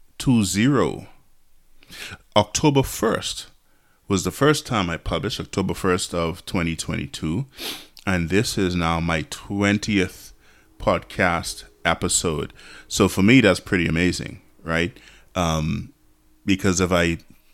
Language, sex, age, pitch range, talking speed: English, male, 30-49, 85-105 Hz, 120 wpm